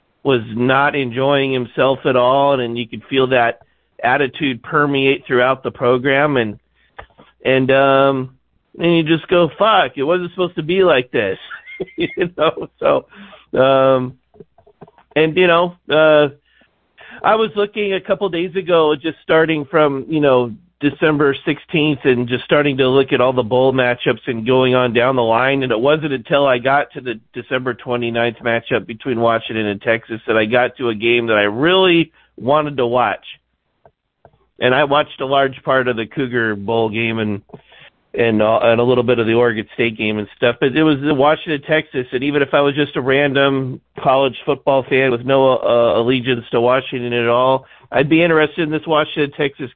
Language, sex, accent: English, male, American